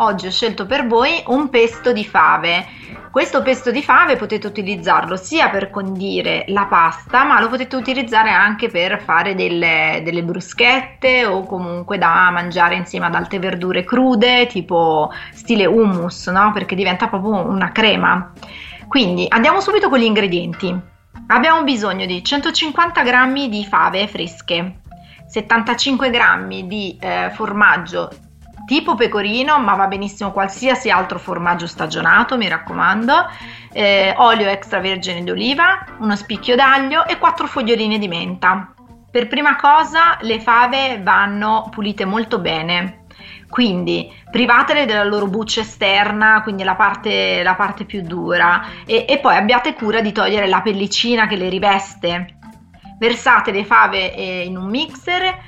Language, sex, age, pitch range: Italian, female, 30-49, 185-245 Hz